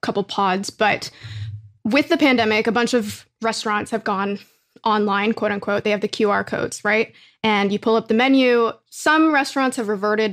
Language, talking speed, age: English, 180 wpm, 20-39